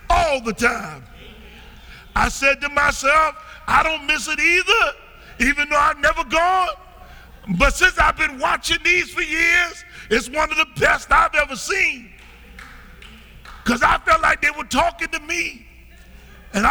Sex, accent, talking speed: male, American, 155 wpm